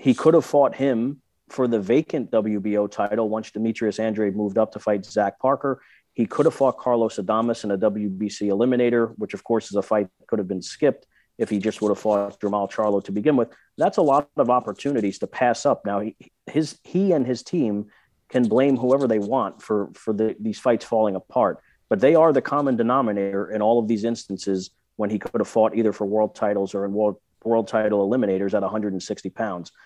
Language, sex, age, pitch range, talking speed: English, male, 40-59, 105-125 Hz, 215 wpm